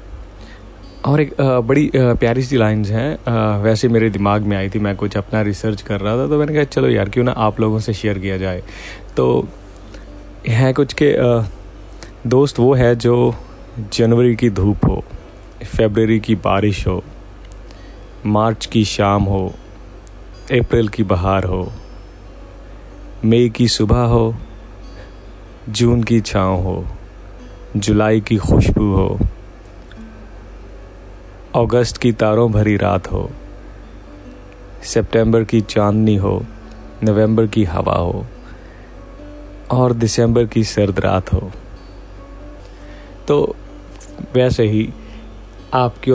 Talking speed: 115 wpm